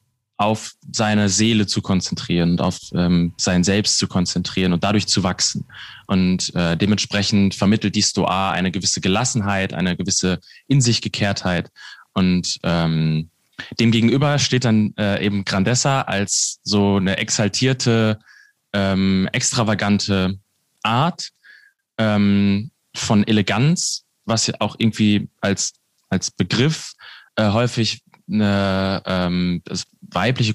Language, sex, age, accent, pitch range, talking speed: German, male, 20-39, German, 100-120 Hz, 120 wpm